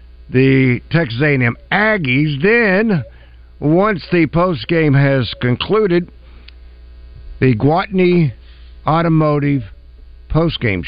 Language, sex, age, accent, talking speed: English, male, 50-69, American, 75 wpm